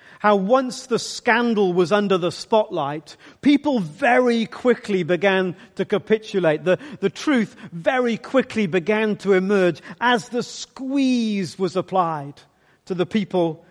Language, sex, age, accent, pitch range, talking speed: English, male, 40-59, British, 185-245 Hz, 130 wpm